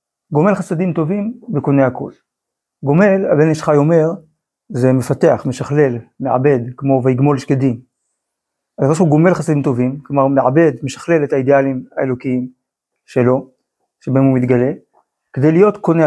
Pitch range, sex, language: 135-165 Hz, male, Hebrew